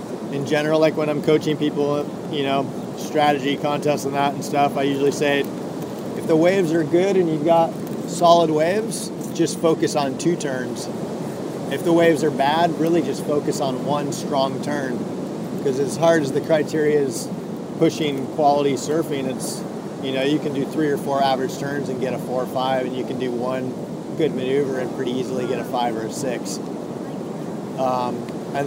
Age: 30-49